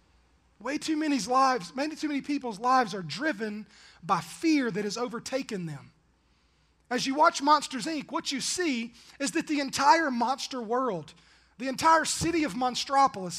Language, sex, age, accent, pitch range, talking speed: English, male, 30-49, American, 210-280 Hz, 160 wpm